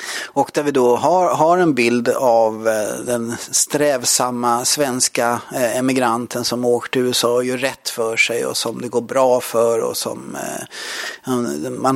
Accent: Swedish